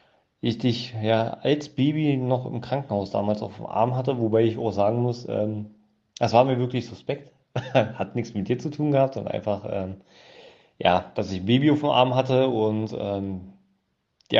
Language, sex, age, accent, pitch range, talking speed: English, male, 40-59, German, 105-130 Hz, 190 wpm